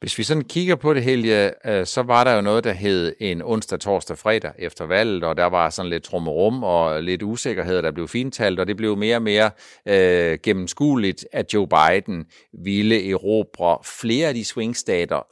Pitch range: 95-120 Hz